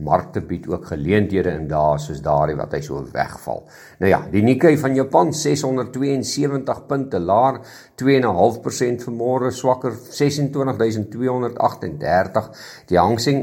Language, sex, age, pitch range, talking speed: English, male, 50-69, 105-145 Hz, 105 wpm